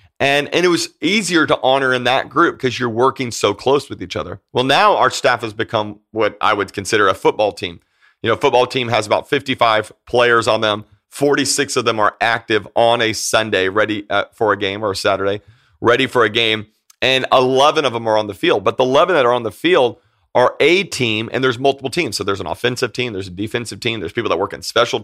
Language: English